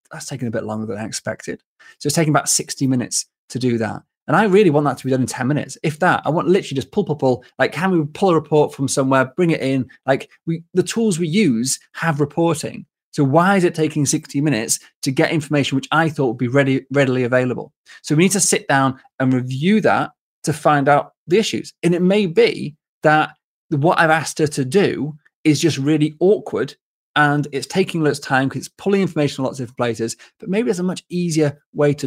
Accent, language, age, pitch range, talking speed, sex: British, English, 30-49, 130-170 Hz, 240 wpm, male